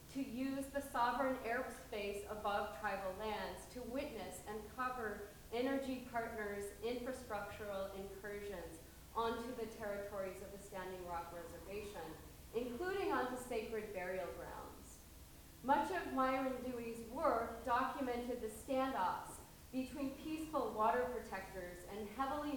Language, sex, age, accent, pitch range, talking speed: English, female, 30-49, American, 210-265 Hz, 115 wpm